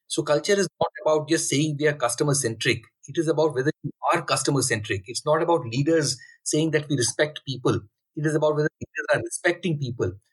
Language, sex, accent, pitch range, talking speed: English, male, Indian, 145-180 Hz, 200 wpm